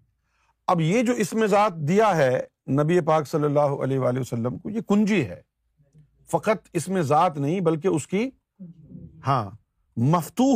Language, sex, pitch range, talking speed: Urdu, male, 140-185 Hz, 160 wpm